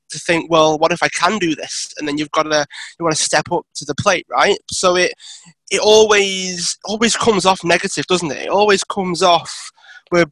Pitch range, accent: 160-190 Hz, British